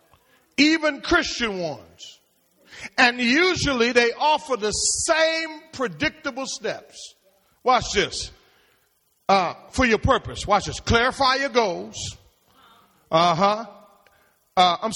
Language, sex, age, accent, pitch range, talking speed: English, male, 50-69, American, 225-305 Hz, 100 wpm